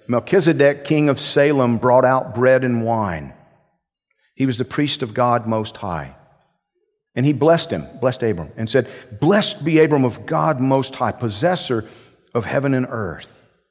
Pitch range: 110-150 Hz